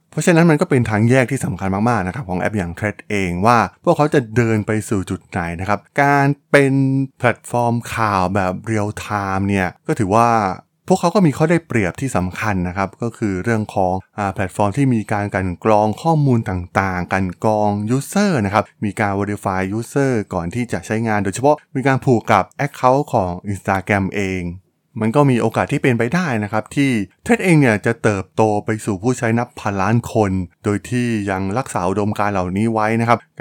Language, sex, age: Thai, male, 20-39